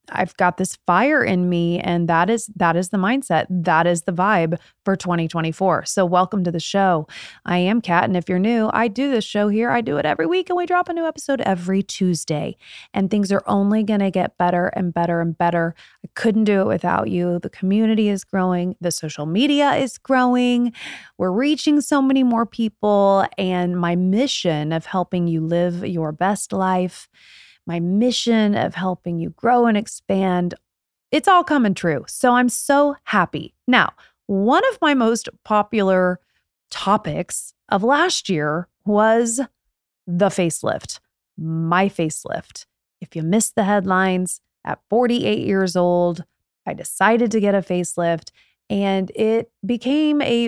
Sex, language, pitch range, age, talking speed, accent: female, English, 175-230 Hz, 30-49, 170 wpm, American